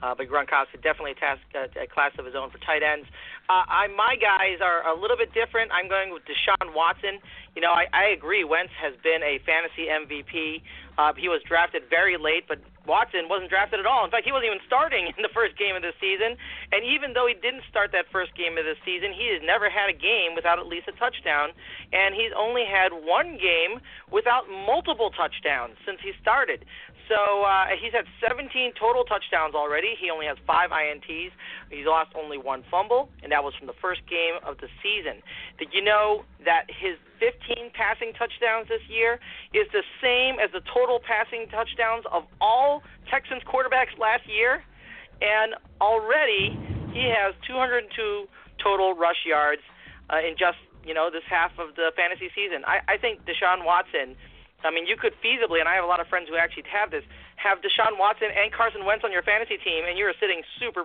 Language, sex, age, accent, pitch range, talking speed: English, male, 30-49, American, 165-250 Hz, 200 wpm